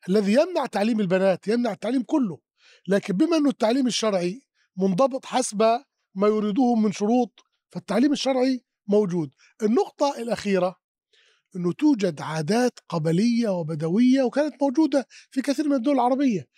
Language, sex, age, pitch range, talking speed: Arabic, male, 30-49, 200-265 Hz, 125 wpm